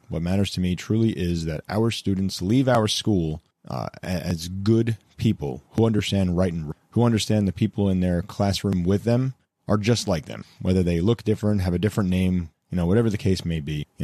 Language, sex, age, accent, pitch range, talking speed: English, male, 30-49, American, 90-110 Hz, 215 wpm